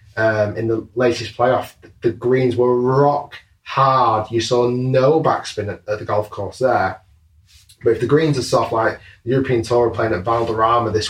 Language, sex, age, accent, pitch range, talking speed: English, male, 20-39, British, 110-135 Hz, 190 wpm